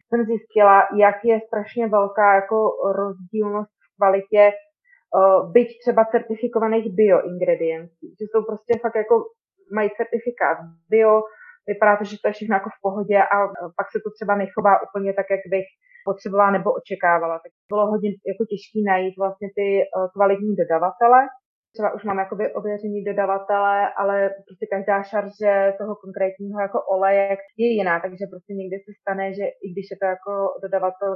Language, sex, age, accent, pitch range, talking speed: Czech, female, 20-39, native, 190-210 Hz, 160 wpm